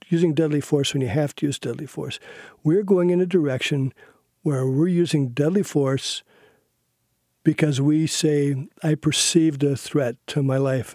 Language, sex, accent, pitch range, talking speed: English, male, American, 135-170 Hz, 165 wpm